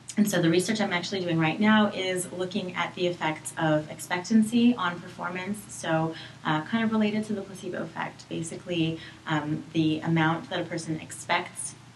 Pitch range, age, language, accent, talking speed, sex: 155-180 Hz, 30-49, English, American, 175 wpm, female